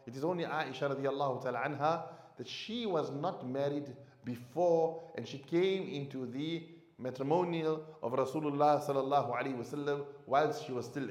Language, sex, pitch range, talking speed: English, male, 140-175 Hz, 140 wpm